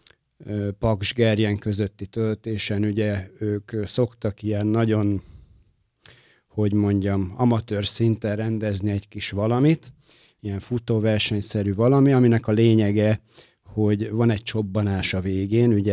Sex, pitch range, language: male, 100-115 Hz, Hungarian